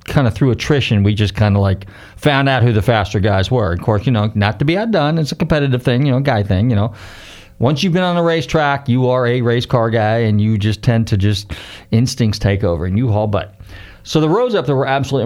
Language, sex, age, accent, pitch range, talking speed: English, male, 40-59, American, 105-140 Hz, 265 wpm